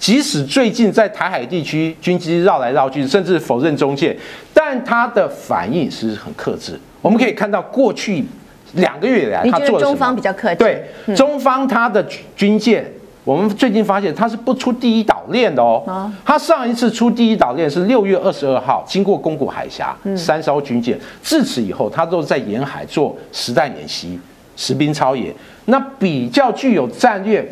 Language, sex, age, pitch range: Chinese, male, 50-69, 155-230 Hz